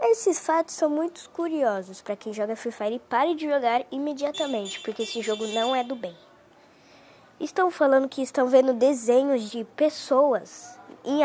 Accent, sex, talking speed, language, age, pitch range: Brazilian, female, 165 wpm, Portuguese, 10-29, 215-285 Hz